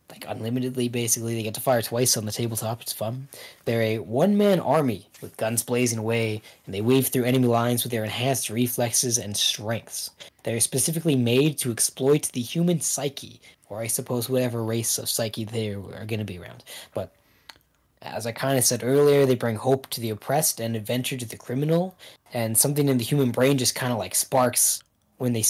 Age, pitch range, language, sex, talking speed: 10-29, 115-135 Hz, English, male, 200 wpm